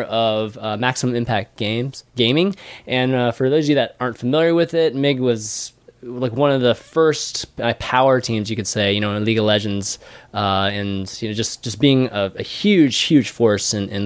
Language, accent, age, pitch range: English, American, 20-39, 110-140 Hz